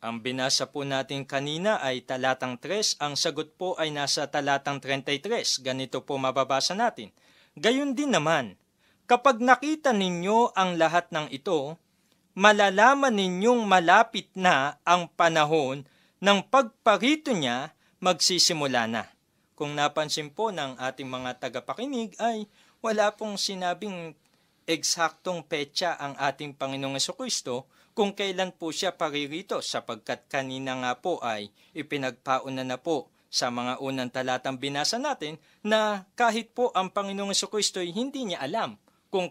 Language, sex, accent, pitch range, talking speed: Filipino, male, native, 145-210 Hz, 130 wpm